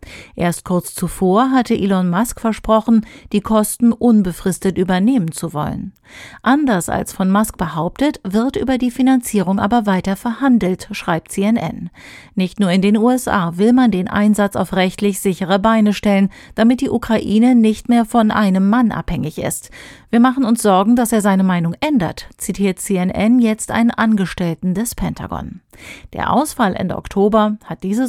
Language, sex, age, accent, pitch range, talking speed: German, female, 40-59, German, 190-235 Hz, 155 wpm